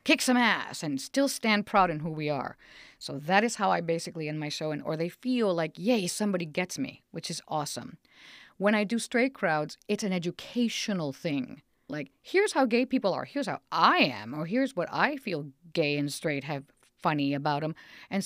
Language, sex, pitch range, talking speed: English, female, 160-230 Hz, 210 wpm